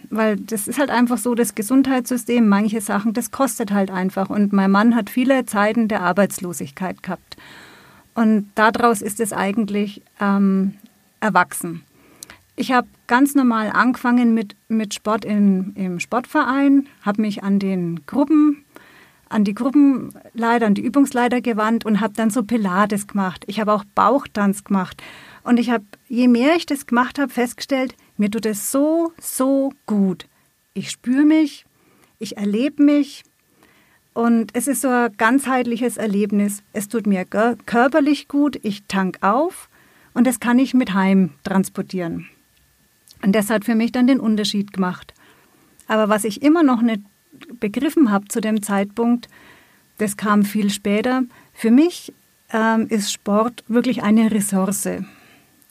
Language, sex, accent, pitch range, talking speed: German, female, German, 205-250 Hz, 145 wpm